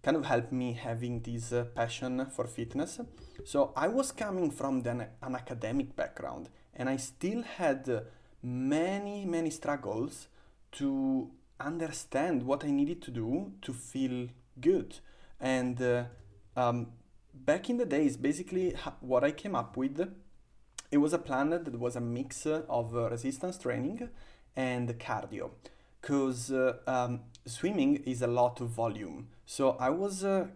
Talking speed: 145 wpm